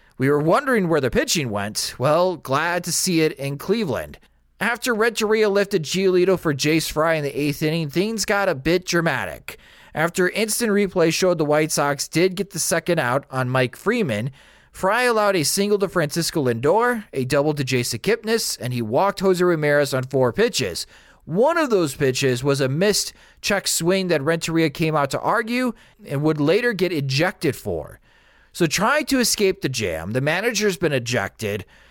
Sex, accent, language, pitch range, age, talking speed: male, American, English, 145-200 Hz, 30-49, 180 wpm